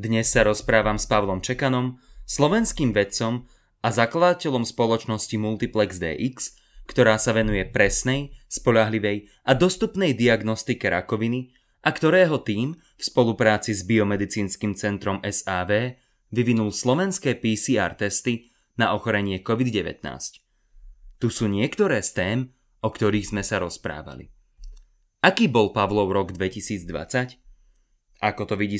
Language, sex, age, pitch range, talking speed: Slovak, male, 20-39, 105-130 Hz, 115 wpm